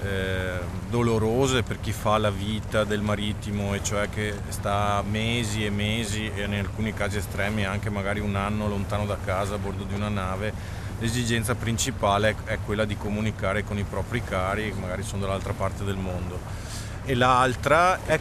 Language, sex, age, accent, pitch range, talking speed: Italian, male, 30-49, native, 100-115 Hz, 170 wpm